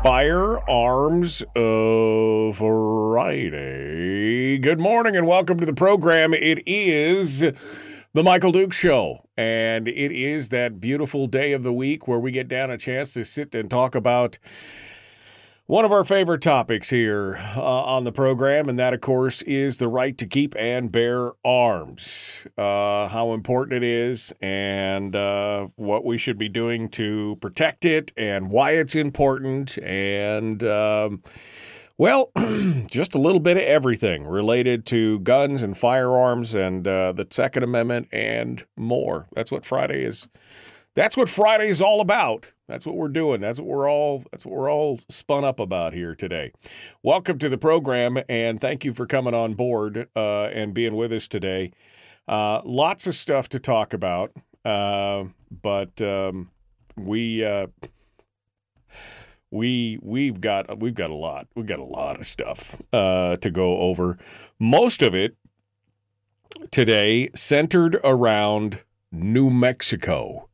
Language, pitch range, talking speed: English, 105-140 Hz, 150 wpm